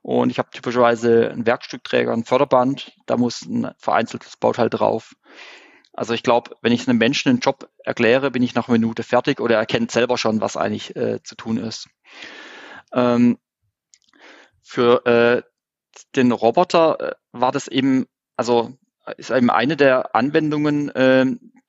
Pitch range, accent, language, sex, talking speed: 115-135 Hz, German, German, male, 155 wpm